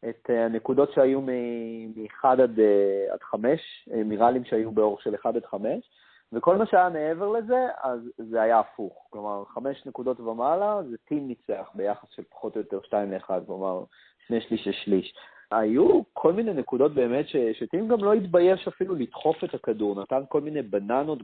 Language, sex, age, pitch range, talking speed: Hebrew, male, 30-49, 110-165 Hz, 170 wpm